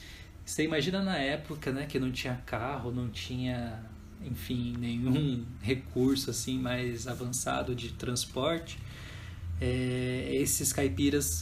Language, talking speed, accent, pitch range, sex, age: Portuguese, 115 wpm, Brazilian, 95-140 Hz, male, 20-39